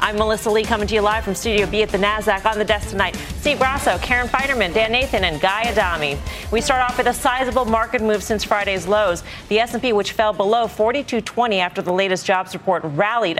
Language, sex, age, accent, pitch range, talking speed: English, female, 40-59, American, 180-225 Hz, 220 wpm